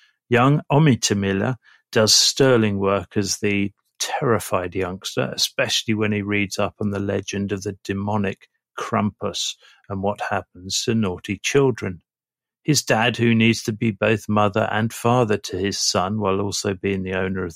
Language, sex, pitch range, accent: English, male, 100-120 Hz, British